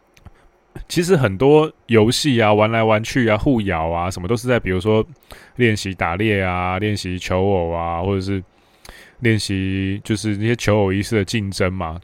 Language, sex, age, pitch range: Chinese, male, 20-39, 95-120 Hz